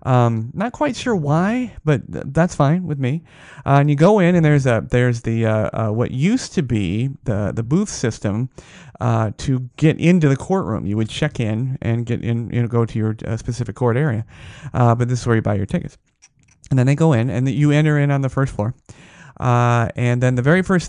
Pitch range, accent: 120-155 Hz, American